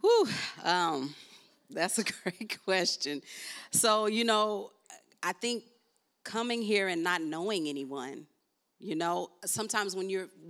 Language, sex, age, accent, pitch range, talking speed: English, female, 40-59, American, 160-195 Hz, 125 wpm